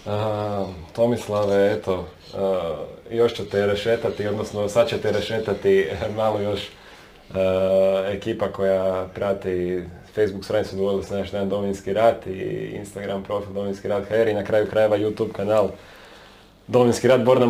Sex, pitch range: male, 95-110 Hz